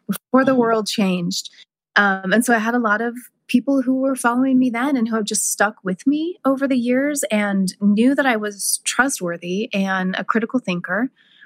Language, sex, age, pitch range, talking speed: English, female, 20-39, 175-240 Hz, 200 wpm